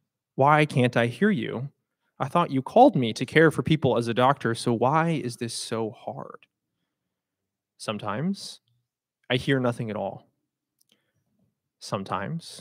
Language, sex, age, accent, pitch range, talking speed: English, male, 20-39, American, 110-140 Hz, 145 wpm